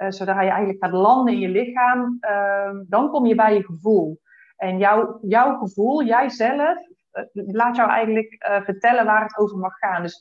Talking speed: 195 wpm